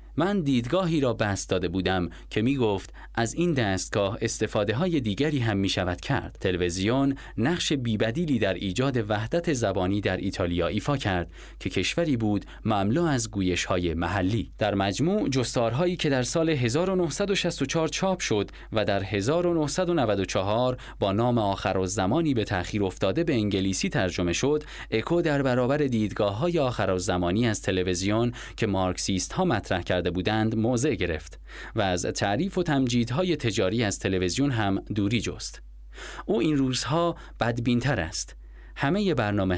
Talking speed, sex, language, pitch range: 145 wpm, male, Persian, 95-140 Hz